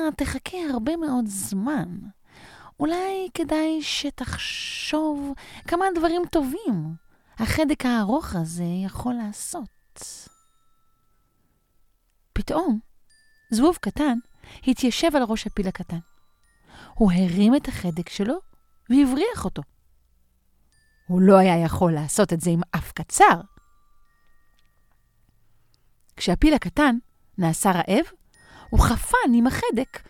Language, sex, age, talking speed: Hebrew, female, 30-49, 95 wpm